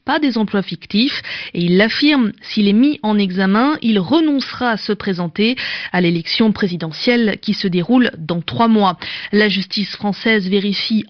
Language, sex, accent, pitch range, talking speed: French, female, French, 190-265 Hz, 160 wpm